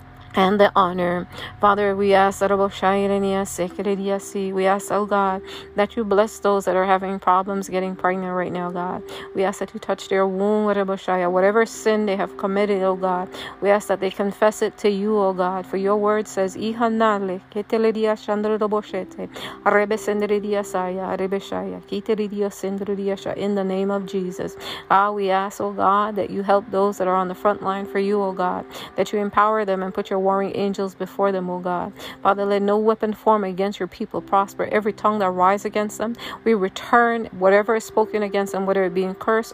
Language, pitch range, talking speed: English, 190-210 Hz, 175 wpm